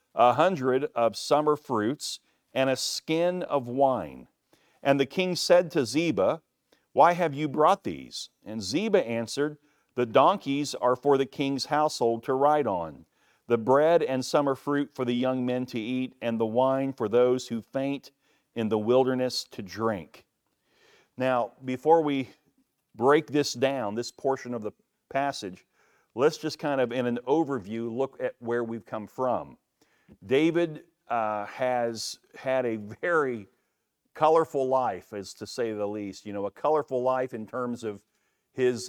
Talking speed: 160 wpm